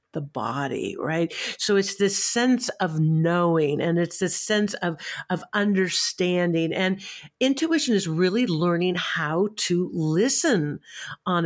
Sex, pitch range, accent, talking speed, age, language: female, 170-215 Hz, American, 130 wpm, 50-69, English